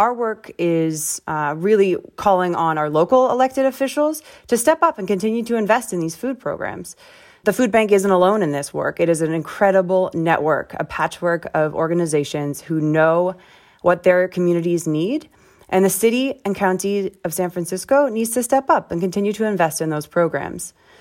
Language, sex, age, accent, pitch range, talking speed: English, female, 20-39, American, 170-215 Hz, 185 wpm